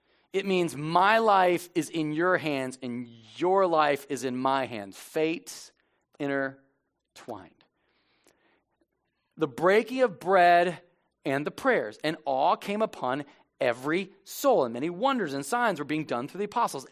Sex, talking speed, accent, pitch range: male, 145 wpm, American, 155-220 Hz